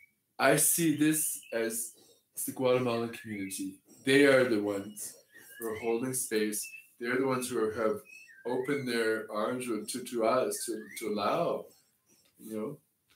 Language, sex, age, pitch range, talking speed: English, male, 20-39, 115-150 Hz, 150 wpm